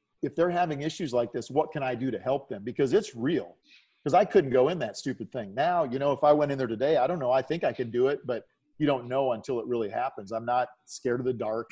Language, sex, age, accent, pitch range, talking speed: English, male, 50-69, American, 115-140 Hz, 285 wpm